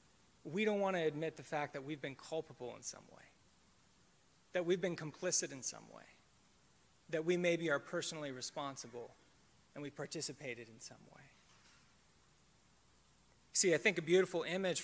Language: English